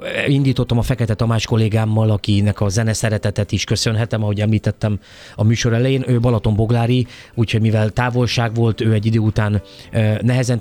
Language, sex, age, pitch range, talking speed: Hungarian, male, 30-49, 100-115 Hz, 155 wpm